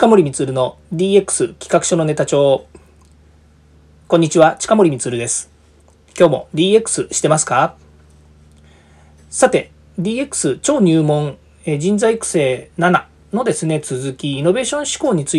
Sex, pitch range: male, 135-190 Hz